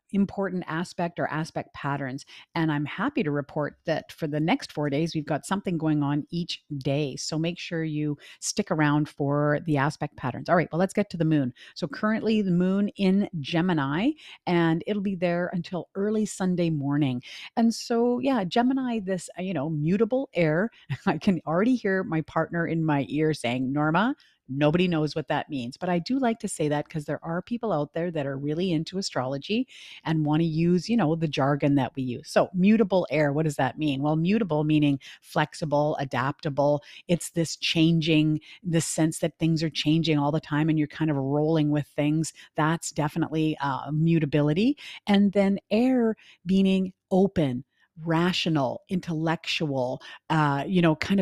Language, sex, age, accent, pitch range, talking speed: English, female, 40-59, American, 150-185 Hz, 180 wpm